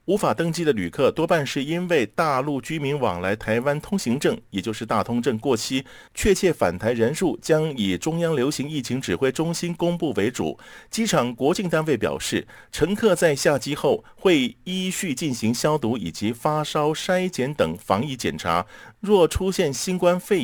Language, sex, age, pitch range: Chinese, male, 50-69, 120-170 Hz